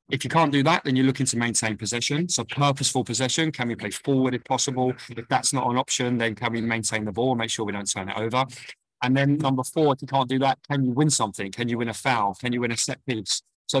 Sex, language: male, English